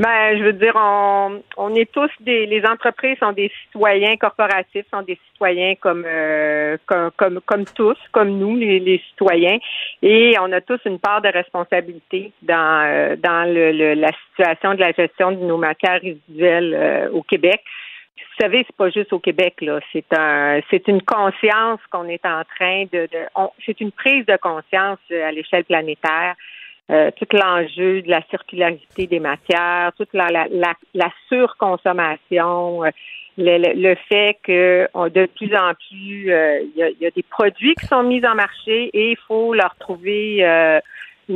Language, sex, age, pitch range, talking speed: French, female, 50-69, 170-210 Hz, 180 wpm